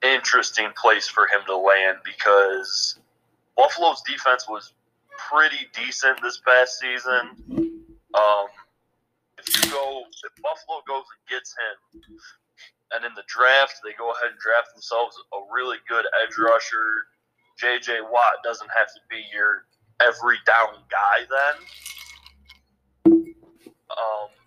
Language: English